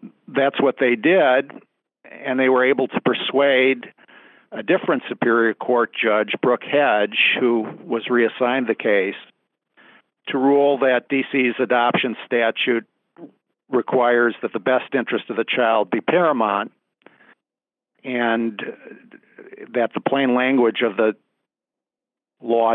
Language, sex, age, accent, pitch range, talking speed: English, male, 50-69, American, 110-130 Hz, 120 wpm